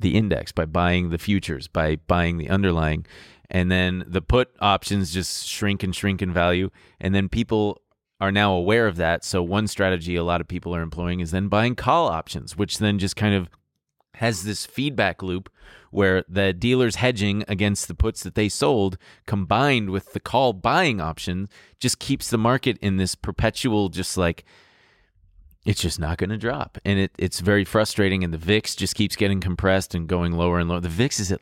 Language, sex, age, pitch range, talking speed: English, male, 30-49, 85-105 Hz, 200 wpm